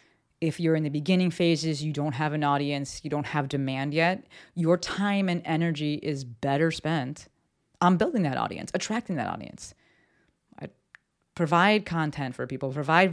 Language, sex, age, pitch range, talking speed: English, female, 30-49, 140-175 Hz, 165 wpm